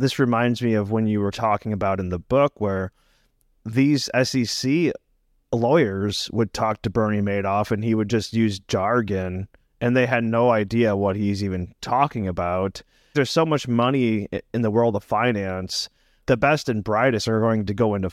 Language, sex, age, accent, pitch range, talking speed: English, male, 30-49, American, 100-120 Hz, 180 wpm